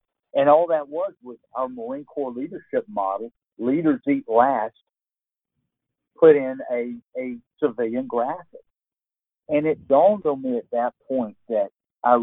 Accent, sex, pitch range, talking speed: American, male, 115-145 Hz, 140 wpm